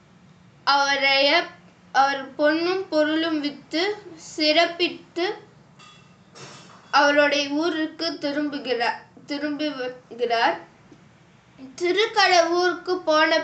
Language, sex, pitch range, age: Tamil, female, 270-335 Hz, 20-39